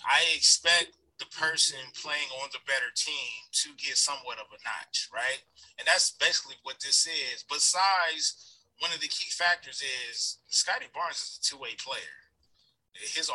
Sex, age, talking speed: male, 20-39, 160 wpm